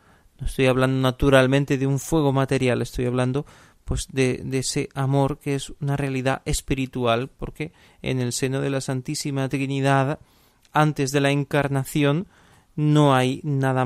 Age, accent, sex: 30-49, Spanish, male